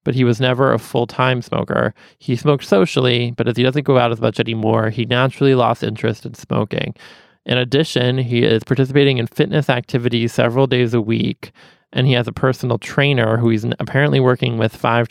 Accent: American